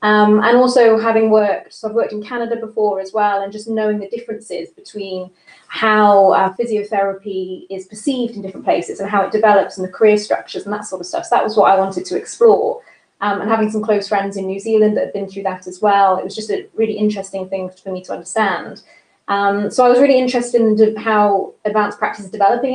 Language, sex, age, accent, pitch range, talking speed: English, female, 20-39, British, 195-235 Hz, 225 wpm